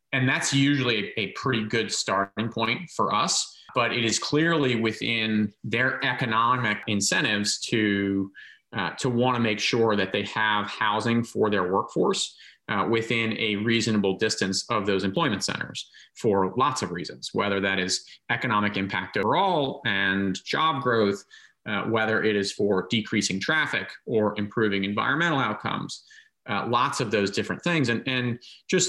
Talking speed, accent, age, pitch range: 150 wpm, American, 30-49, 105-125 Hz